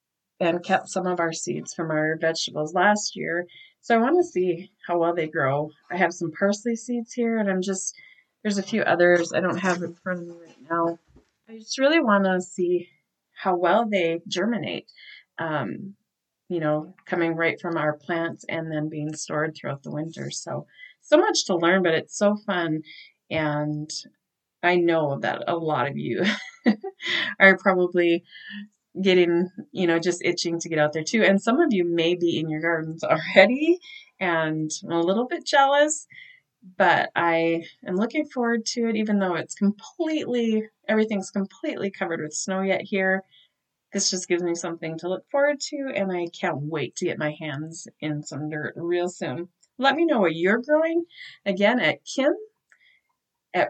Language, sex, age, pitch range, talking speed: English, female, 30-49, 165-220 Hz, 180 wpm